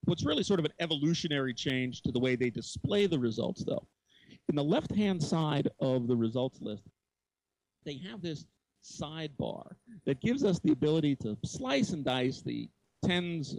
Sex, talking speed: male, 170 wpm